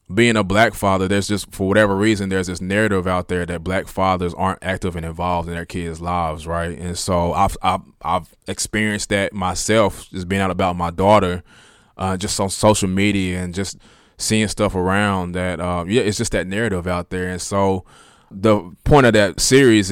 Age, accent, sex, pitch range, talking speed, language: 20-39, American, male, 90-100 Hz, 200 wpm, English